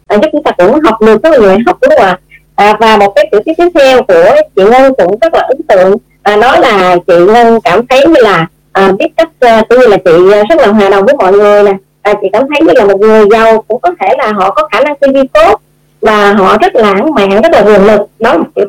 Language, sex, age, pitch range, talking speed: Vietnamese, male, 20-39, 200-255 Hz, 275 wpm